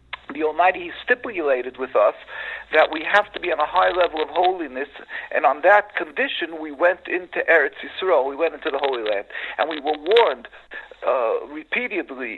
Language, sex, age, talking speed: Danish, male, 50-69, 180 wpm